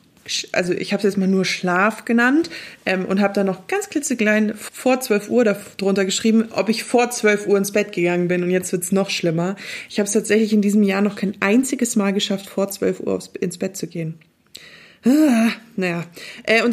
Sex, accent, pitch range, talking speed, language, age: female, German, 190-230 Hz, 210 wpm, German, 20-39